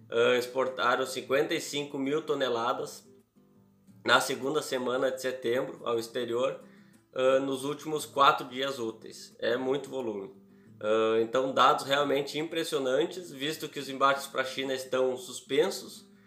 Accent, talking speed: Brazilian, 120 wpm